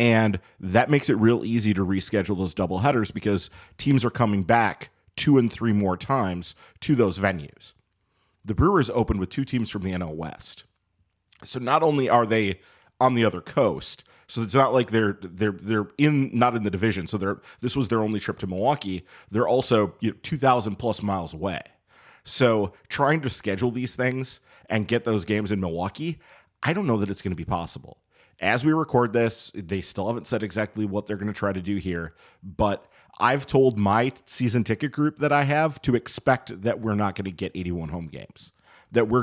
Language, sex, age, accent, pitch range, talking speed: English, male, 30-49, American, 100-120 Hz, 200 wpm